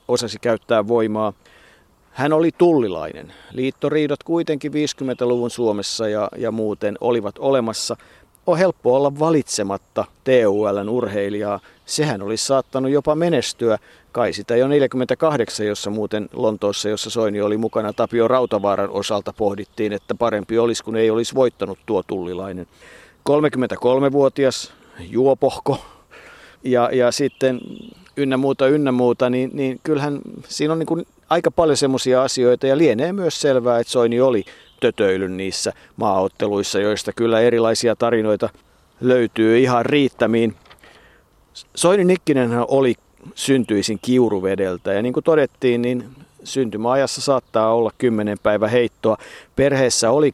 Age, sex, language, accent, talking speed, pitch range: 50-69, male, Finnish, native, 125 wpm, 110-135 Hz